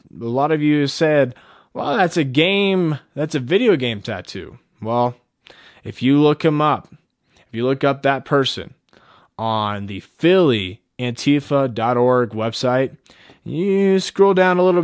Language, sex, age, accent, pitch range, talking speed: English, male, 20-39, American, 115-150 Hz, 140 wpm